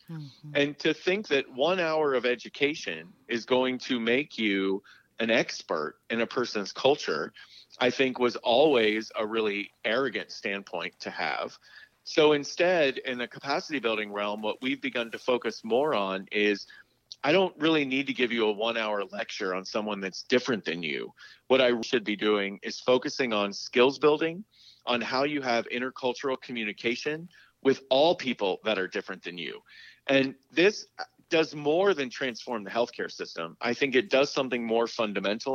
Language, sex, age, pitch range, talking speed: English, male, 40-59, 110-145 Hz, 170 wpm